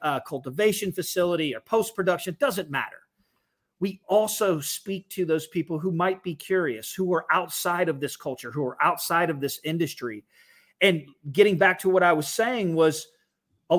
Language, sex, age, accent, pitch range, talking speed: English, male, 30-49, American, 145-190 Hz, 170 wpm